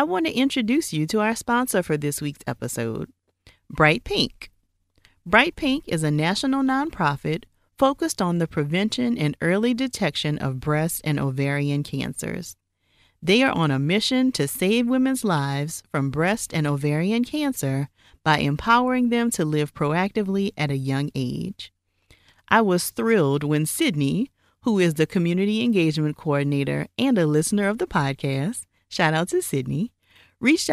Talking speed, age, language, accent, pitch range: 150 wpm, 40-59, English, American, 140-205 Hz